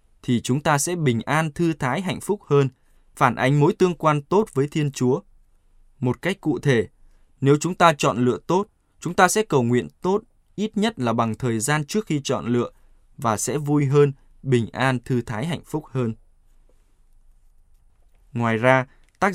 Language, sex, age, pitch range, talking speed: Vietnamese, male, 20-39, 115-155 Hz, 185 wpm